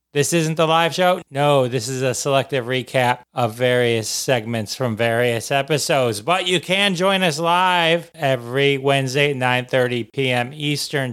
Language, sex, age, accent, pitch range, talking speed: English, male, 40-59, American, 130-175 Hz, 150 wpm